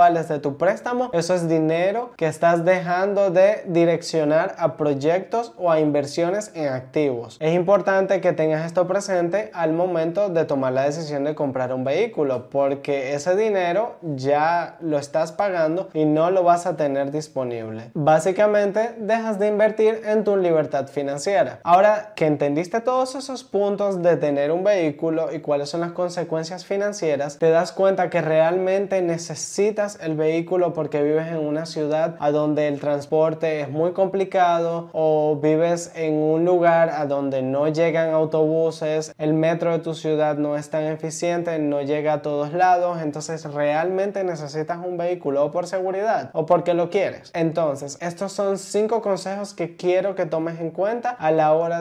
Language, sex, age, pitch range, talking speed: Spanish, male, 20-39, 155-185 Hz, 165 wpm